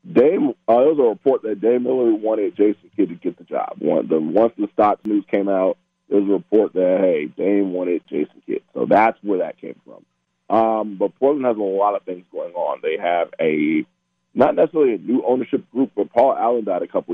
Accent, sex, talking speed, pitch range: American, male, 230 wpm, 90-120 Hz